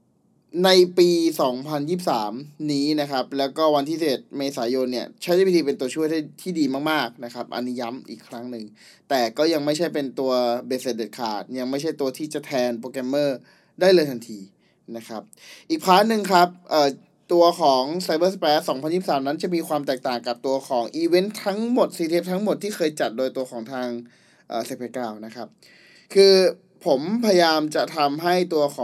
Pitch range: 130-170 Hz